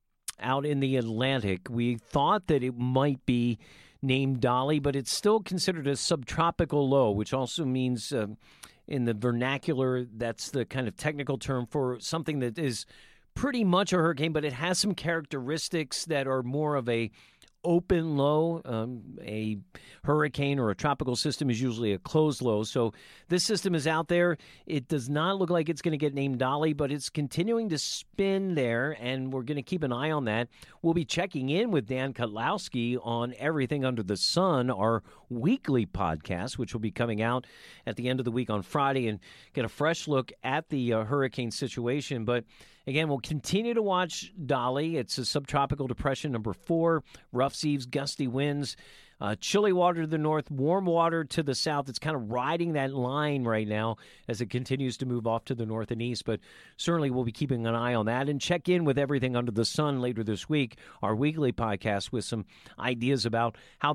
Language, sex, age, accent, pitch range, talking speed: English, male, 50-69, American, 120-155 Hz, 195 wpm